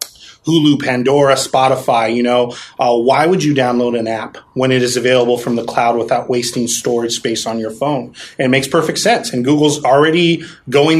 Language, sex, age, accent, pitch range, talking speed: English, male, 30-49, American, 125-145 Hz, 190 wpm